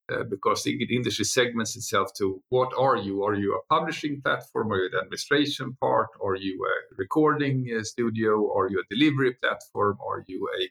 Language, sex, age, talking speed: English, male, 50-69, 195 wpm